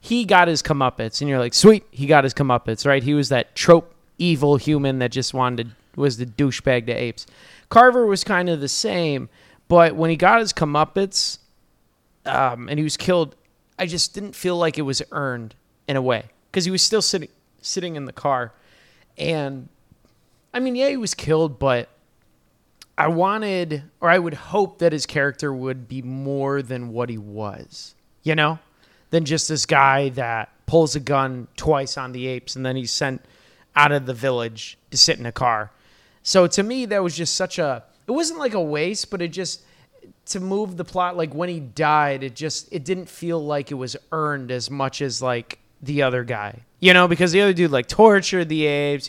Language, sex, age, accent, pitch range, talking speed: English, male, 30-49, American, 130-175 Hz, 205 wpm